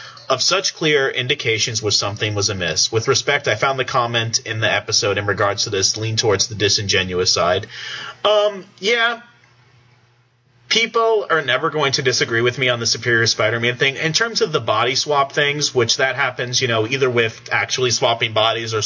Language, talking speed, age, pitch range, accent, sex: English, 190 wpm, 30-49, 115-135 Hz, American, male